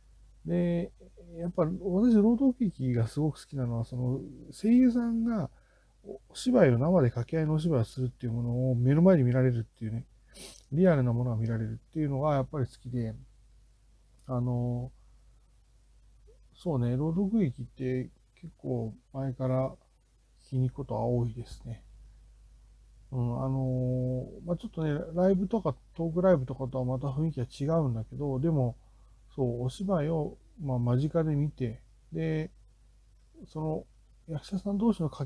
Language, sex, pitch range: Japanese, male, 120-160 Hz